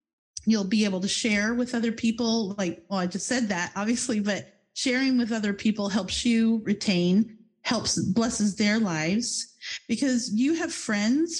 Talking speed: 160 wpm